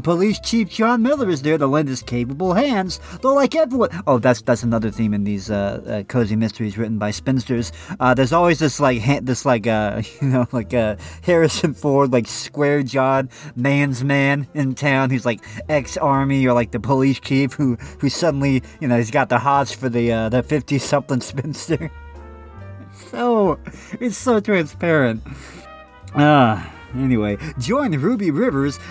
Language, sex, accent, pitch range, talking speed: English, male, American, 125-200 Hz, 175 wpm